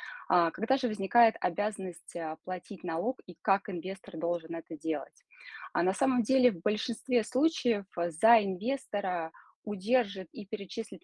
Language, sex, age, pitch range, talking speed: Russian, female, 20-39, 175-235 Hz, 125 wpm